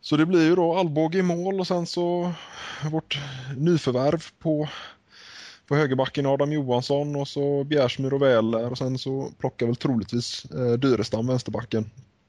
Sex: male